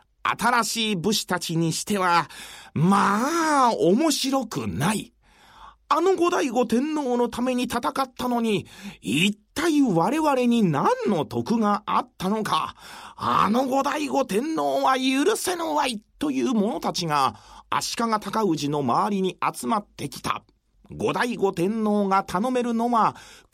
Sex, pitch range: male, 195-270 Hz